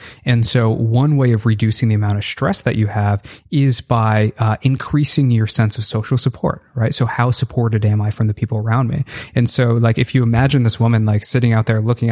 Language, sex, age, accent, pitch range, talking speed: English, male, 20-39, American, 110-125 Hz, 230 wpm